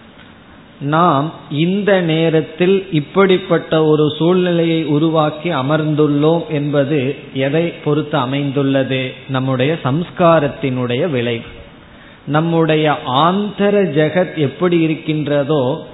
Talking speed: 75 wpm